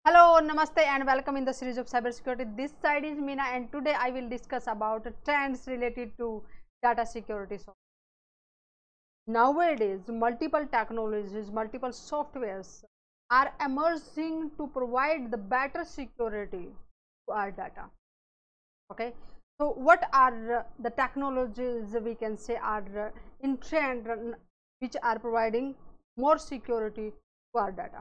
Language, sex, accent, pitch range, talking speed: English, female, Indian, 230-295 Hz, 130 wpm